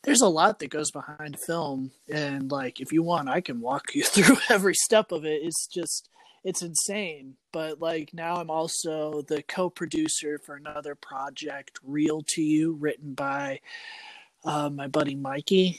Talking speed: 165 wpm